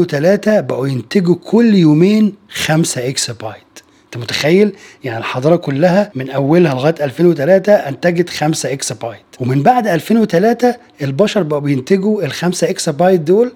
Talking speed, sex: 140 wpm, male